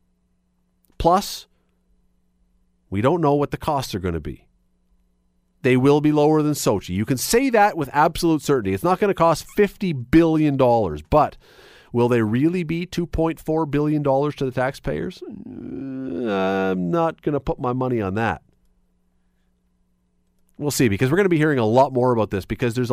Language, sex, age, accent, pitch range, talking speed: English, male, 40-59, American, 90-150 Hz, 170 wpm